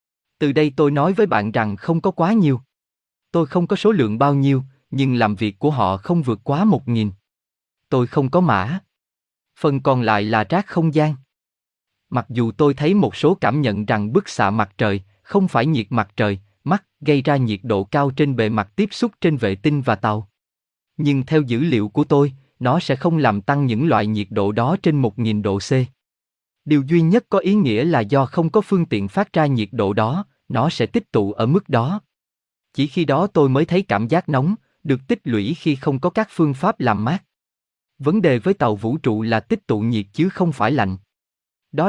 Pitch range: 110-165 Hz